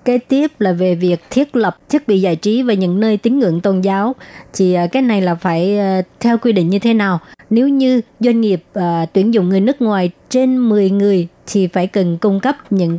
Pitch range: 185-235 Hz